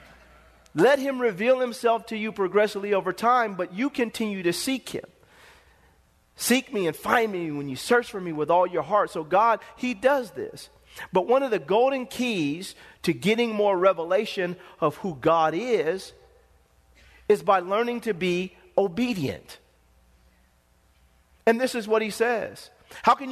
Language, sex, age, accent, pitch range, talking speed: English, male, 40-59, American, 170-230 Hz, 160 wpm